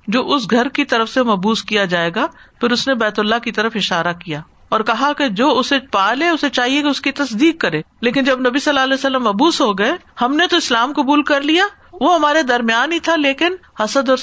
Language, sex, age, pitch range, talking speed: Urdu, female, 50-69, 215-280 Hz, 240 wpm